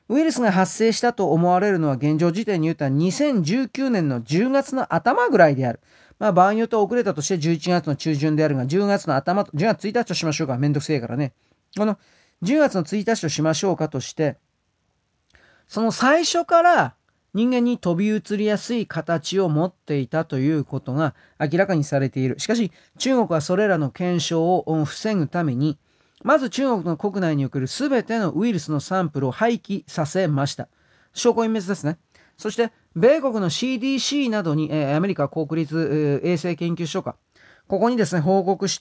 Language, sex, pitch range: Japanese, male, 155-210 Hz